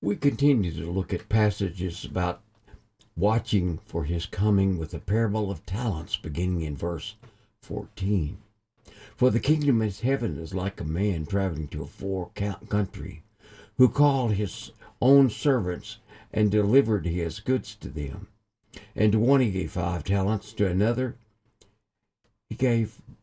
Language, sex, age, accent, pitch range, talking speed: English, male, 60-79, American, 95-115 Hz, 145 wpm